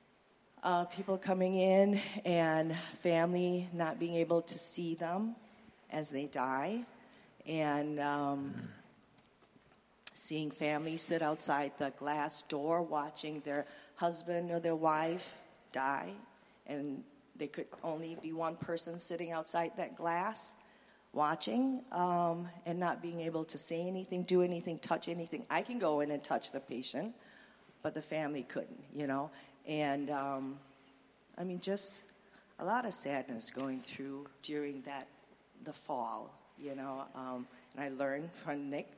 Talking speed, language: 140 wpm, English